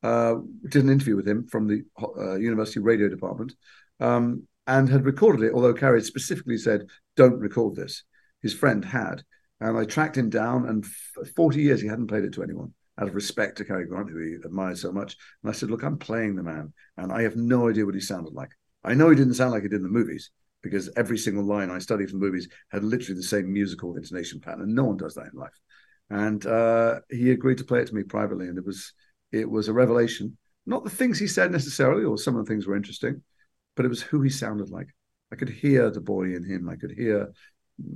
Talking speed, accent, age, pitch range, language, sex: 235 wpm, British, 50-69, 100-125 Hz, English, male